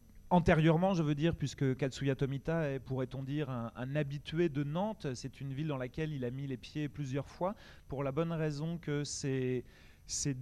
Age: 30-49